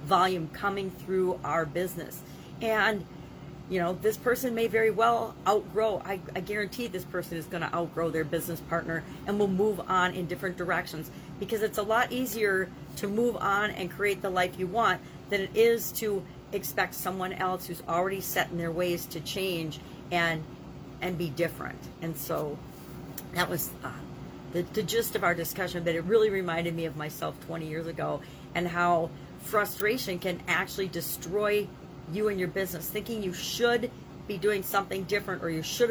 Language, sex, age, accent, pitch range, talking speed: English, female, 40-59, American, 170-220 Hz, 180 wpm